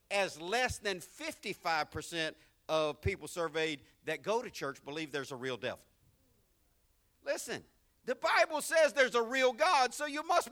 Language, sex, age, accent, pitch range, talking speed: English, male, 50-69, American, 150-215 Hz, 155 wpm